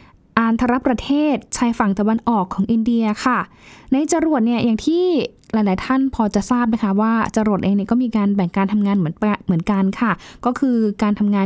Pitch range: 195-235 Hz